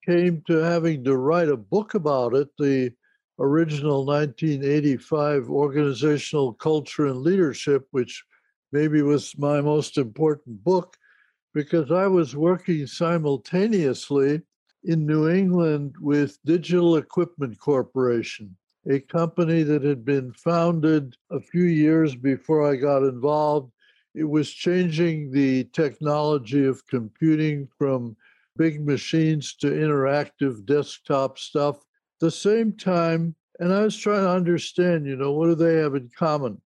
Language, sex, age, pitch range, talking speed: English, male, 60-79, 140-165 Hz, 130 wpm